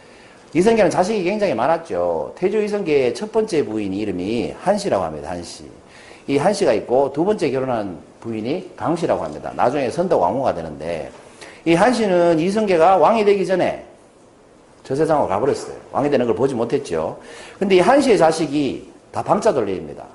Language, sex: Korean, male